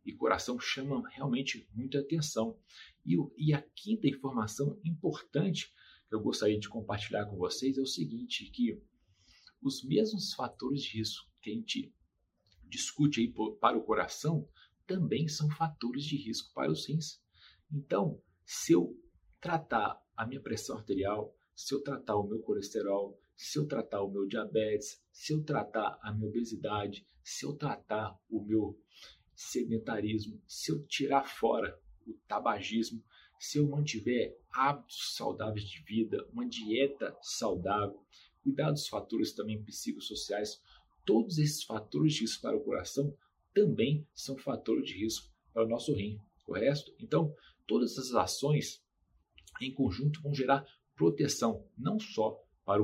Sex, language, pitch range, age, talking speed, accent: male, Portuguese, 110-150 Hz, 40-59, 145 wpm, Brazilian